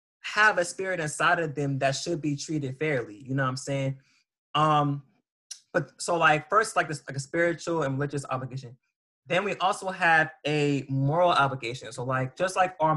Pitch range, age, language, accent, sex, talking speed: 135-165 Hz, 20-39, English, American, male, 190 wpm